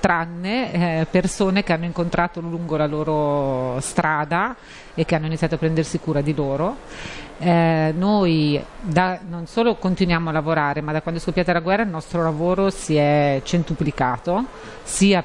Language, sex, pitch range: Italian, female, 150-180 Hz